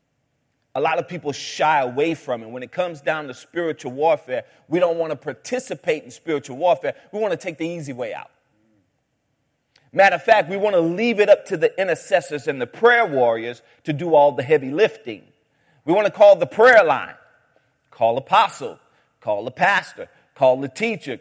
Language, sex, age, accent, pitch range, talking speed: English, male, 40-59, American, 150-230 Hz, 195 wpm